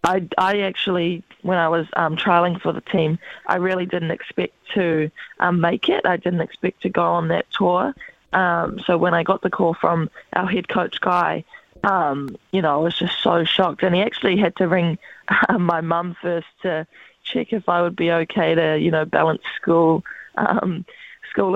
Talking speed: 200 wpm